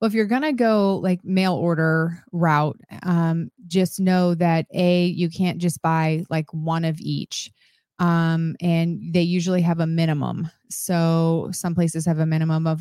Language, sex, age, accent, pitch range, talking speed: English, female, 30-49, American, 155-175 Hz, 175 wpm